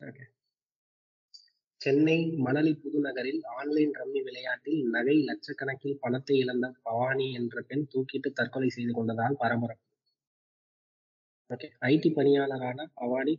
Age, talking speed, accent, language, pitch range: 20-39, 85 wpm, native, Tamil, 125-165 Hz